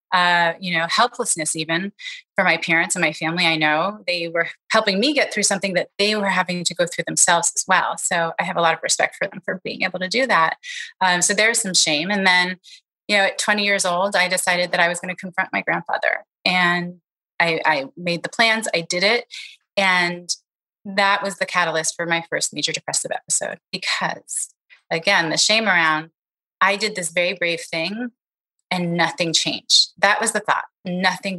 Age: 30-49